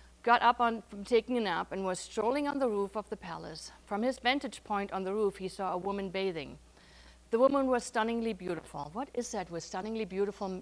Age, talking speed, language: 50-69, 220 wpm, English